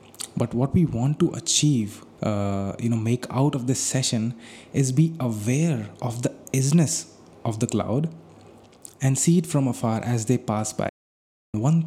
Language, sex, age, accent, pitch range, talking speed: English, male, 20-39, Indian, 105-130 Hz, 165 wpm